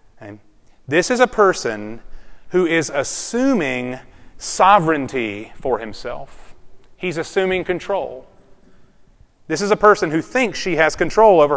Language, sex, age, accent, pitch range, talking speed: English, male, 30-49, American, 165-220 Hz, 120 wpm